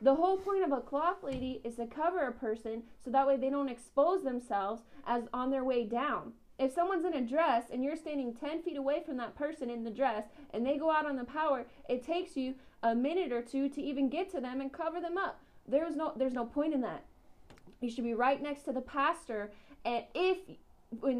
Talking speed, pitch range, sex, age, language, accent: 230 wpm, 245-305 Hz, female, 20-39, English, American